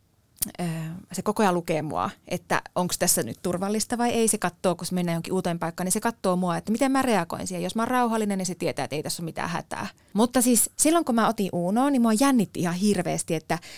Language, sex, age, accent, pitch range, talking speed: Finnish, female, 20-39, native, 165-225 Hz, 235 wpm